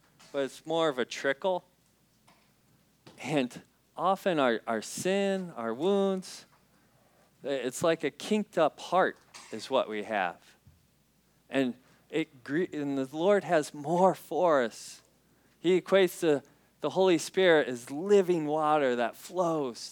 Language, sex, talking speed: English, male, 130 wpm